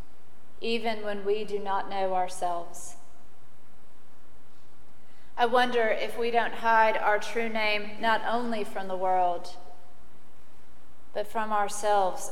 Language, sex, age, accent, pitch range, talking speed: English, female, 30-49, American, 190-230 Hz, 115 wpm